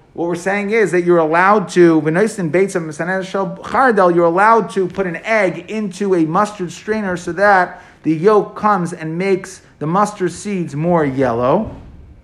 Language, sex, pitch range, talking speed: English, male, 140-190 Hz, 150 wpm